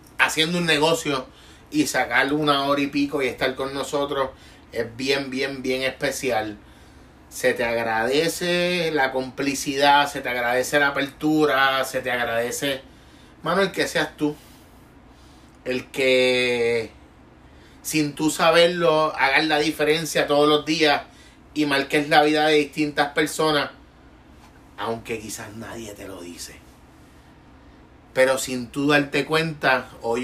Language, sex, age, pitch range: Spanish, male, 30-49, 125-155 Hz